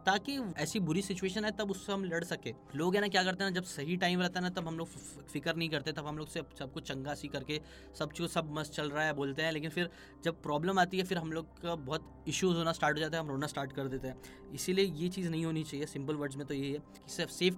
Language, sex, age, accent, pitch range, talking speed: Hindi, male, 10-29, native, 145-175 Hz, 285 wpm